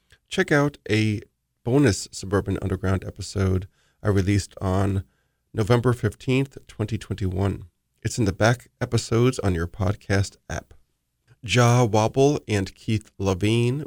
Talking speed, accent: 115 wpm, American